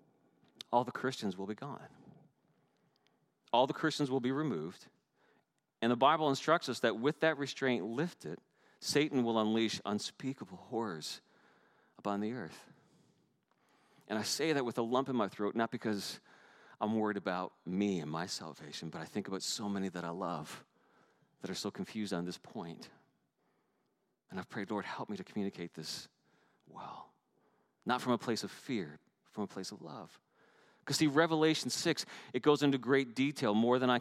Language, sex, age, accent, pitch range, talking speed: English, male, 40-59, American, 110-140 Hz, 175 wpm